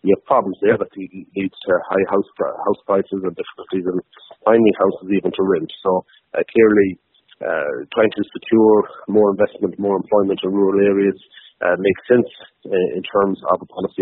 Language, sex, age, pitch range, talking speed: English, male, 40-59, 95-105 Hz, 175 wpm